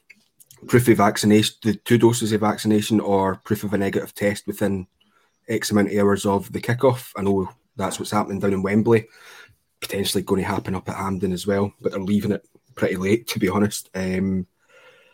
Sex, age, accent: male, 20-39, British